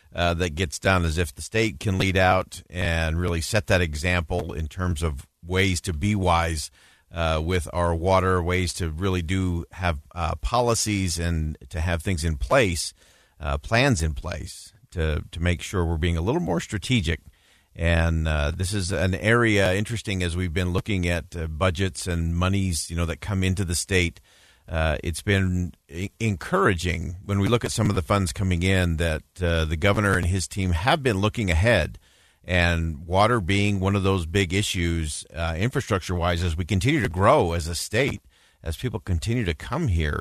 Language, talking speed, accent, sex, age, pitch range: English, 190 wpm, American, male, 50-69, 85-100 Hz